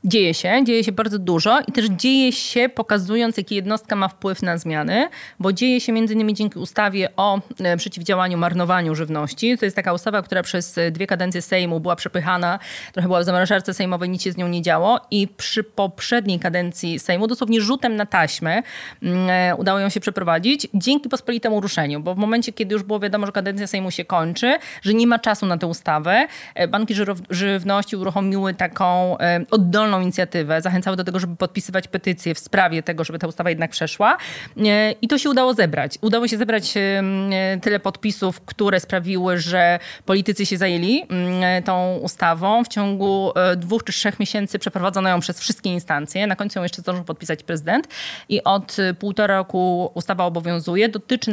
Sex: female